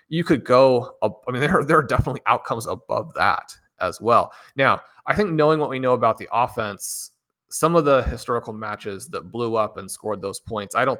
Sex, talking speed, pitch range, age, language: male, 205 wpm, 100-130 Hz, 30-49, English